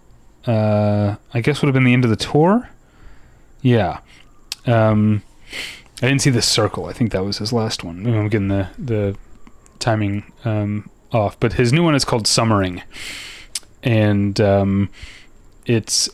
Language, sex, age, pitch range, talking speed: English, male, 30-49, 105-125 Hz, 155 wpm